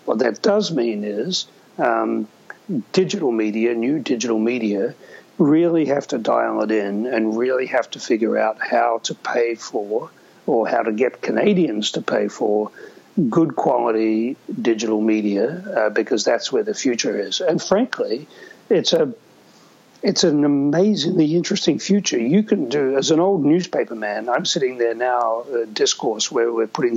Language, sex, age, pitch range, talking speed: English, male, 60-79, 115-165 Hz, 160 wpm